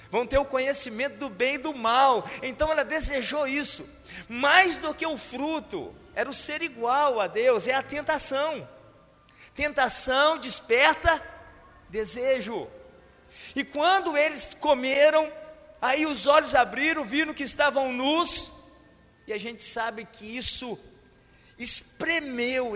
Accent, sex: Brazilian, male